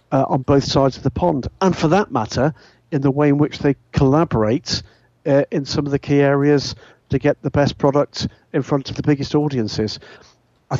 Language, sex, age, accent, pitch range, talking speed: English, male, 50-69, British, 120-145 Hz, 205 wpm